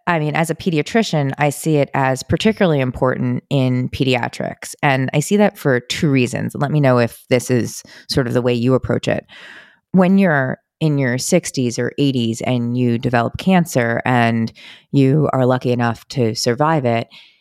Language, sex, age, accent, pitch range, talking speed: English, female, 30-49, American, 120-150 Hz, 180 wpm